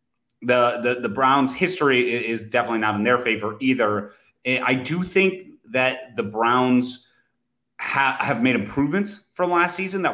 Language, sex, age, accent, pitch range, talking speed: English, male, 30-49, American, 120-145 Hz, 155 wpm